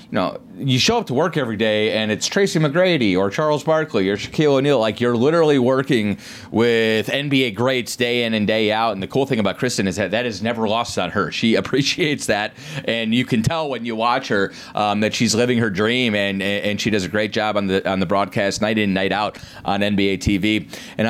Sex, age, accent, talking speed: male, 30-49, American, 230 wpm